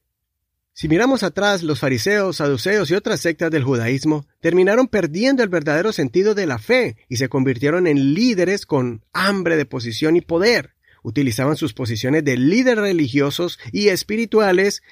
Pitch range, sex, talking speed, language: 135-190 Hz, male, 155 wpm, Spanish